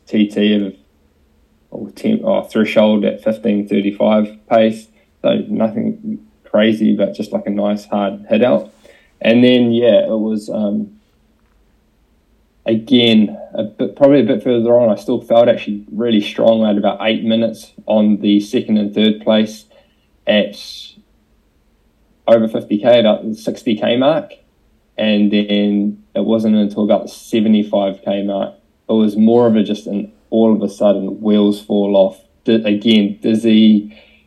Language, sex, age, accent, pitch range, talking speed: English, male, 20-39, Australian, 100-115 Hz, 150 wpm